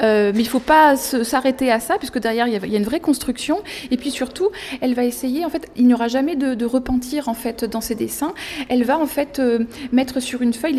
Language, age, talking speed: French, 20-39, 255 wpm